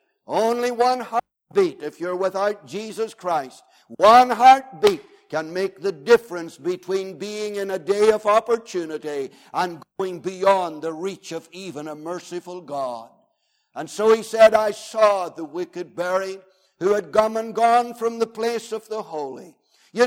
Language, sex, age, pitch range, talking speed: English, male, 60-79, 190-225 Hz, 155 wpm